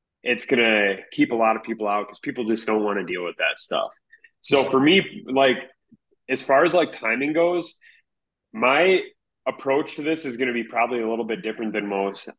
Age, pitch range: 20-39, 105-125 Hz